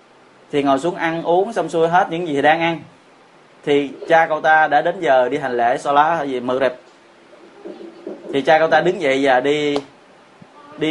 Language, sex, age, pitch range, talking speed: Vietnamese, male, 20-39, 160-215 Hz, 210 wpm